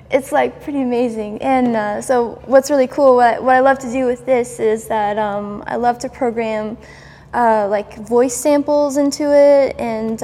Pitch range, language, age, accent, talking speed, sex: 220-265 Hz, English, 10-29, American, 190 wpm, female